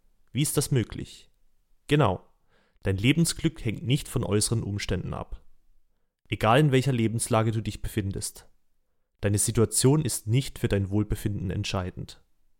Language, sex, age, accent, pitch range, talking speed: German, male, 30-49, German, 100-125 Hz, 135 wpm